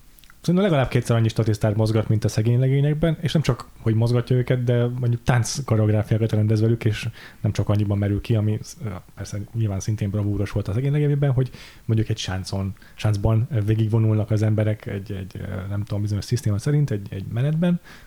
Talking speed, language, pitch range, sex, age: 165 wpm, Hungarian, 105-125 Hz, male, 30-49